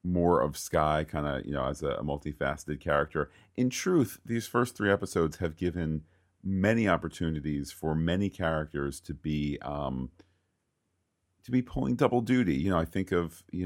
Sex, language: male, English